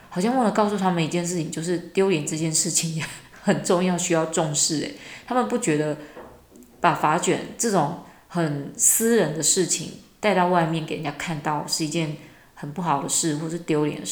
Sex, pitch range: female, 155-185 Hz